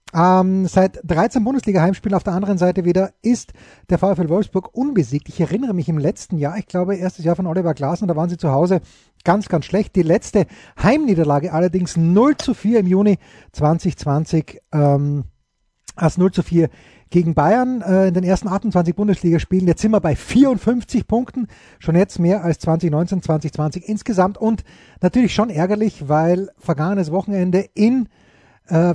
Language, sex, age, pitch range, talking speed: German, male, 30-49, 160-205 Hz, 165 wpm